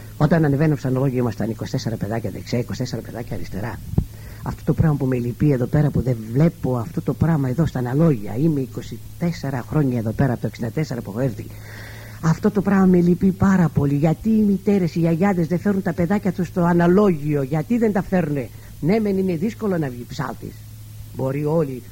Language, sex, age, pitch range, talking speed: Greek, female, 50-69, 110-165 Hz, 190 wpm